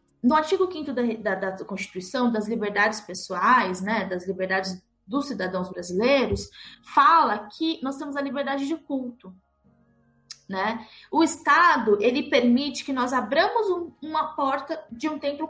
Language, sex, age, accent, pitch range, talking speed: Portuguese, female, 20-39, Brazilian, 220-285 Hz, 140 wpm